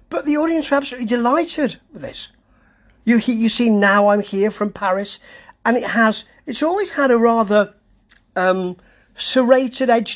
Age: 40-59